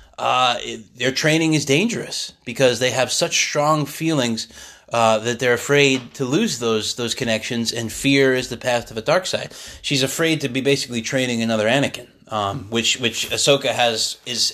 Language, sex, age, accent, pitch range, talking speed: English, male, 20-39, American, 115-140 Hz, 180 wpm